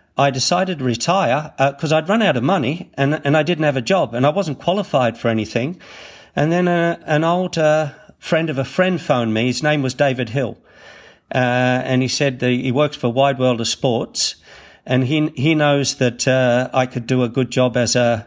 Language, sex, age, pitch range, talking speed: English, male, 50-69, 125-150 Hz, 220 wpm